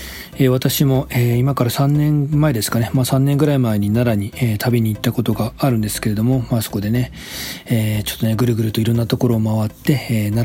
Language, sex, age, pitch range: Japanese, male, 40-59, 110-135 Hz